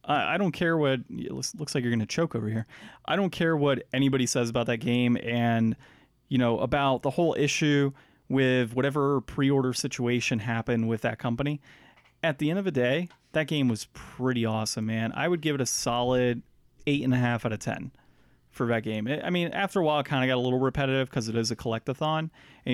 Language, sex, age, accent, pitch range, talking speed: English, male, 30-49, American, 120-145 Hz, 210 wpm